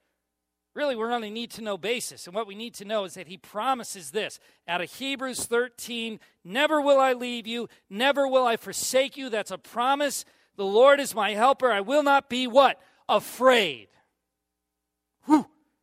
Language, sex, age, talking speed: English, male, 40-59, 175 wpm